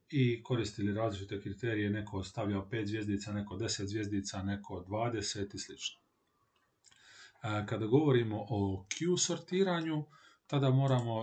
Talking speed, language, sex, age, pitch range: 120 wpm, Croatian, male, 30-49, 105-135 Hz